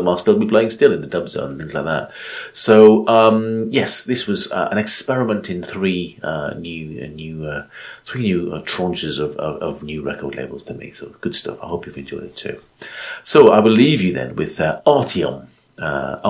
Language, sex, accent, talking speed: English, male, British, 205 wpm